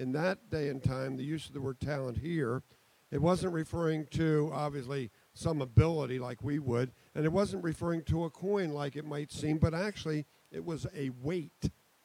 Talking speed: 195 wpm